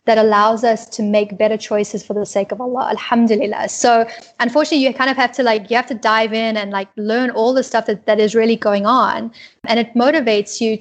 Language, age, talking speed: English, 10-29, 235 wpm